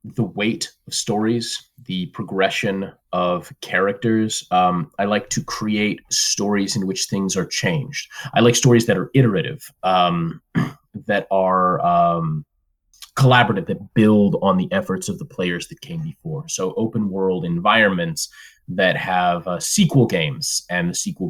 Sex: male